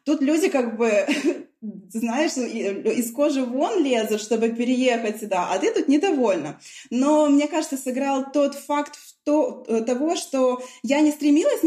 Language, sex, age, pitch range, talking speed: Russian, female, 20-39, 220-280 Hz, 140 wpm